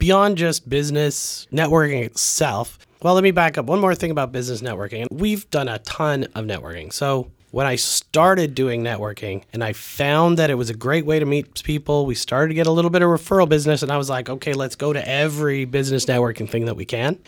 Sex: male